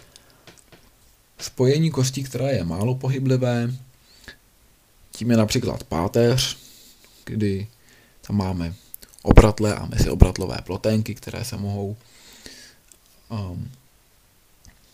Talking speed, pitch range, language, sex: 85 wpm, 105-125 Hz, Czech, male